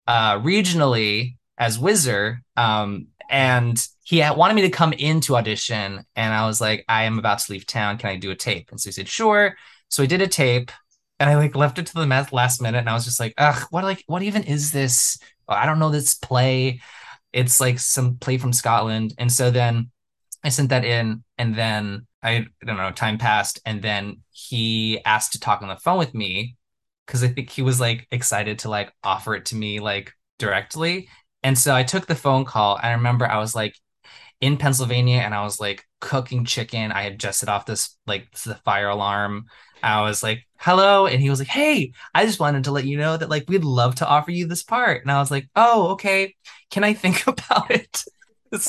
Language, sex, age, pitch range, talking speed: English, male, 20-39, 110-155 Hz, 225 wpm